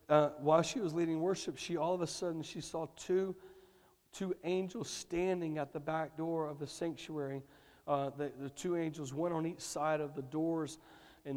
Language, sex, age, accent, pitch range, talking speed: English, male, 40-59, American, 145-165 Hz, 195 wpm